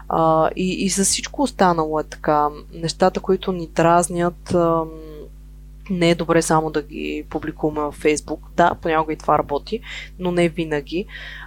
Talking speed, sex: 145 wpm, female